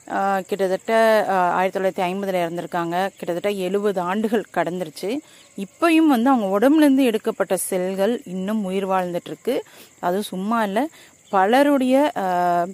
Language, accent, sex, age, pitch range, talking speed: Tamil, native, female, 30-49, 175-230 Hz, 105 wpm